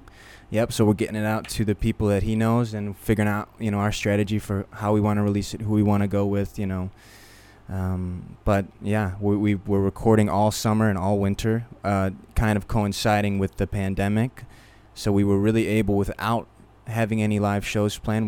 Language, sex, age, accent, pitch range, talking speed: English, male, 20-39, American, 100-110 Hz, 210 wpm